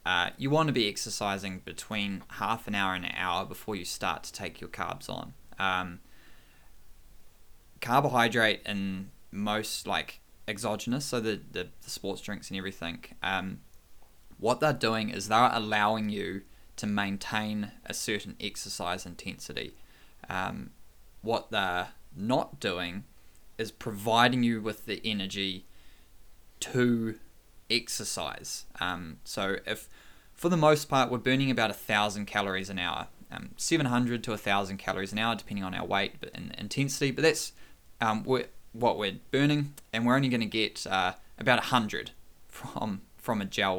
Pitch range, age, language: 95-120 Hz, 10-29, English